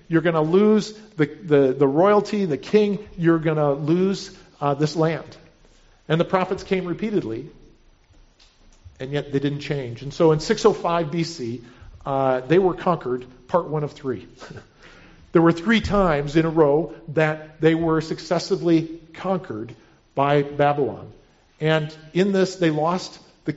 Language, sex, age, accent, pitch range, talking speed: English, male, 50-69, American, 140-170 Hz, 150 wpm